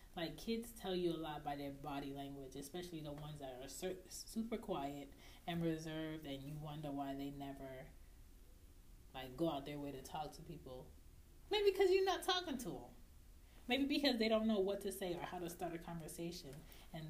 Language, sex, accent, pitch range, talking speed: English, female, American, 140-180 Hz, 195 wpm